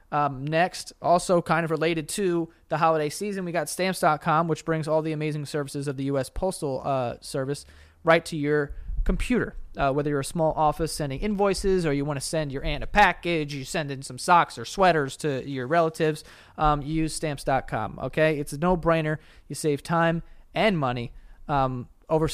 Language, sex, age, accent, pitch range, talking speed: English, male, 30-49, American, 130-160 Hz, 190 wpm